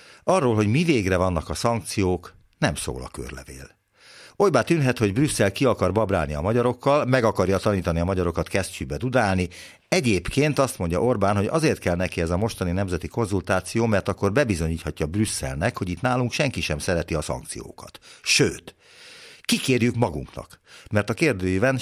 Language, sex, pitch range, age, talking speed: Hungarian, male, 85-120 Hz, 60-79, 160 wpm